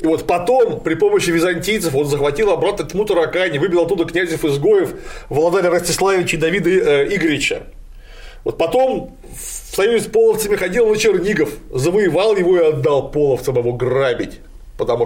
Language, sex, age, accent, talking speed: Russian, male, 30-49, native, 145 wpm